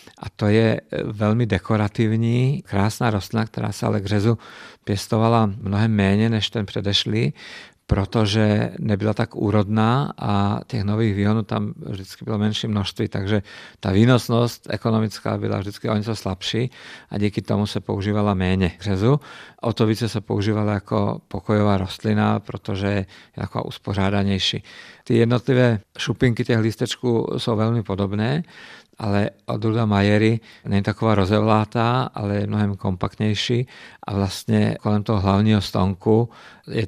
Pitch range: 100-115 Hz